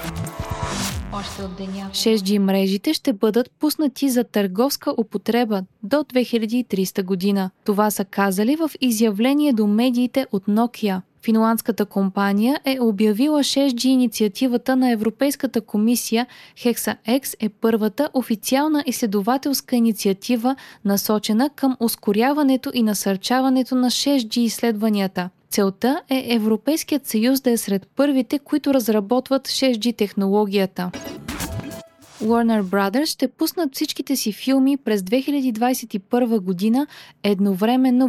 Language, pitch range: Bulgarian, 210-265 Hz